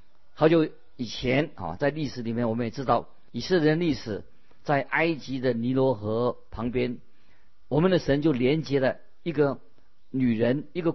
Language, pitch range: Chinese, 115-150 Hz